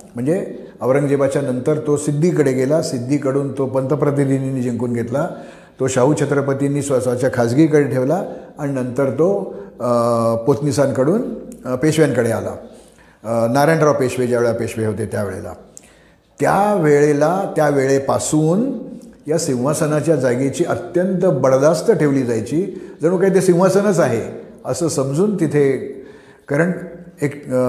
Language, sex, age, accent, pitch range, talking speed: Marathi, male, 50-69, native, 125-165 Hz, 105 wpm